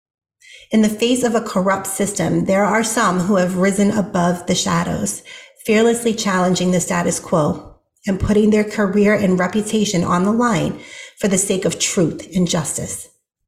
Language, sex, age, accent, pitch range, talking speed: English, female, 40-59, American, 175-210 Hz, 165 wpm